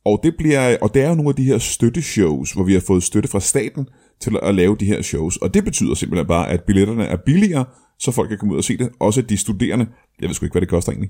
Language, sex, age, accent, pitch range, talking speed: Danish, male, 30-49, native, 105-145 Hz, 285 wpm